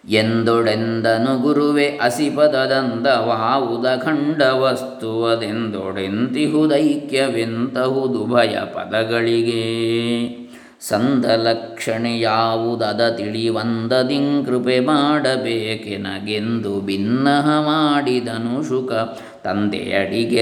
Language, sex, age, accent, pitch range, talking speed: English, male, 20-39, Indian, 115-145 Hz, 75 wpm